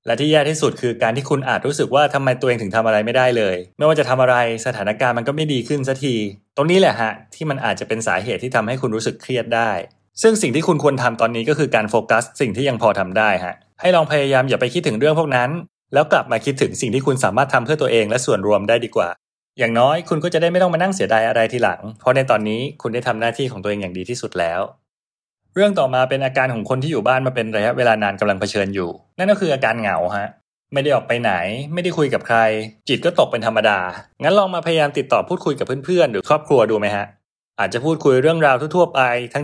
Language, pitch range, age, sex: English, 110-150 Hz, 20-39, male